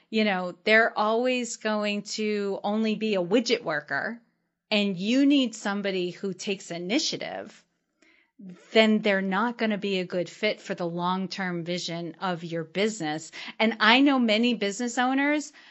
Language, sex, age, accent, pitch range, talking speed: English, female, 30-49, American, 185-230 Hz, 155 wpm